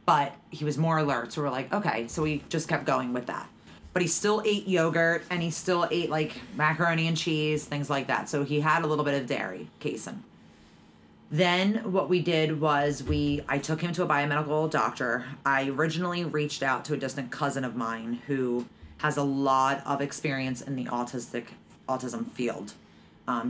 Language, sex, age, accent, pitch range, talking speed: English, female, 30-49, American, 130-160 Hz, 195 wpm